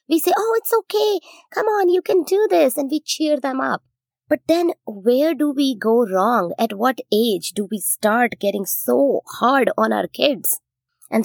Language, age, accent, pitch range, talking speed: English, 20-39, Indian, 195-270 Hz, 190 wpm